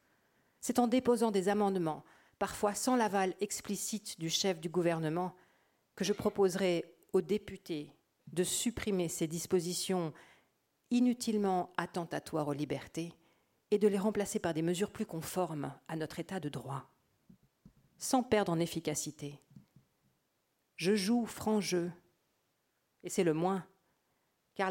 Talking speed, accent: 130 wpm, French